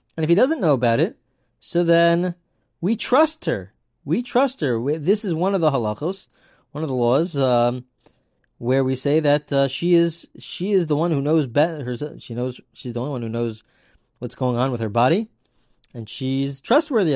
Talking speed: 205 wpm